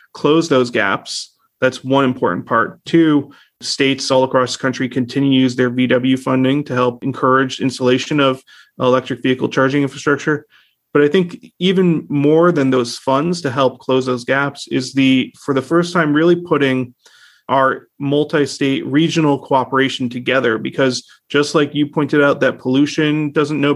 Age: 30-49